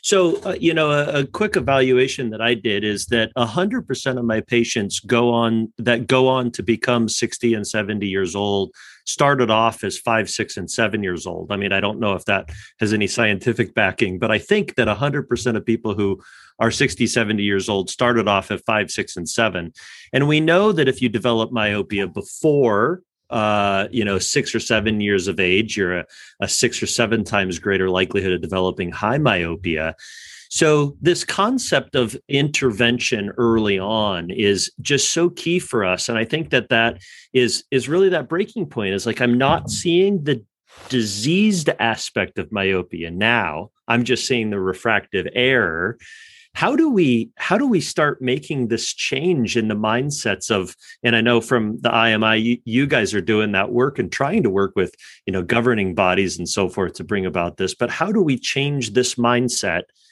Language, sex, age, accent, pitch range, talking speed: English, male, 40-59, American, 100-130 Hz, 190 wpm